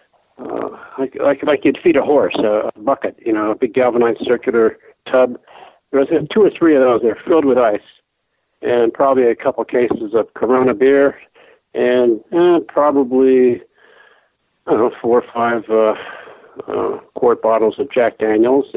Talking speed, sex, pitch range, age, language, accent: 165 wpm, male, 110-145 Hz, 50-69, English, American